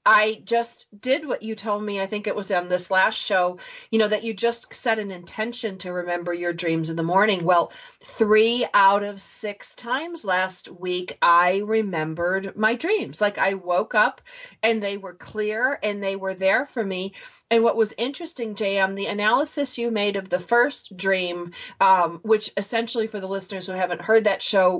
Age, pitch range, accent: 40-59, 185-220 Hz, American